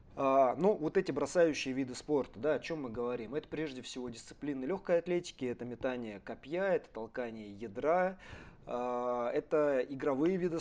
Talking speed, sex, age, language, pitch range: 160 wpm, male, 20-39, Russian, 115-145 Hz